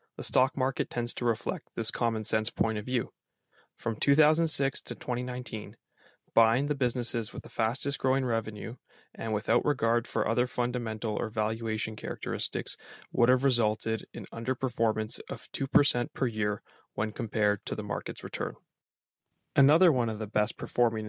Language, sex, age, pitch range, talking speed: English, male, 20-39, 110-130 Hz, 155 wpm